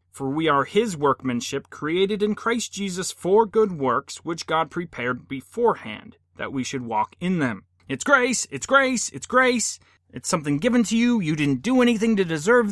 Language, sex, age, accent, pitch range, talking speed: English, male, 30-49, American, 125-195 Hz, 185 wpm